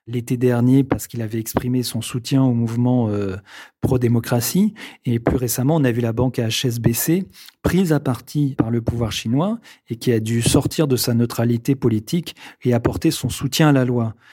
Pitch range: 115-140 Hz